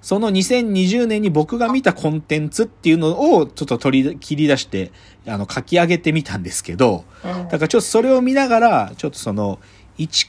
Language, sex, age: Japanese, male, 40-59